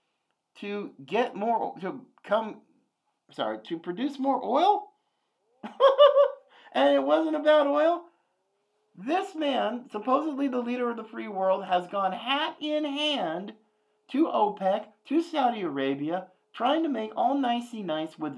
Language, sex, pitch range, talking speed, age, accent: English, male, 190-285 Hz, 130 wpm, 50-69, American